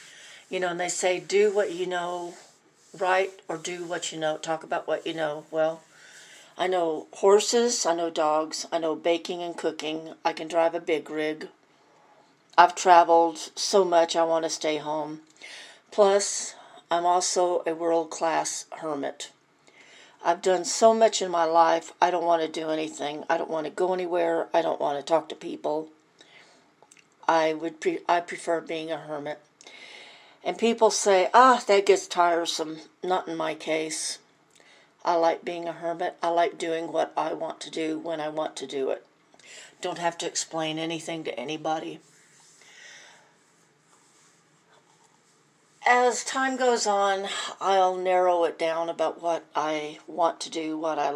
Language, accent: English, American